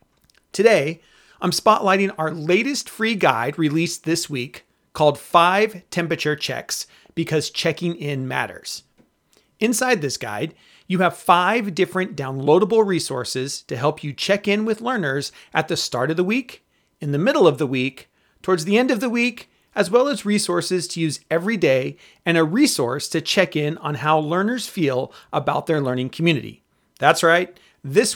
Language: English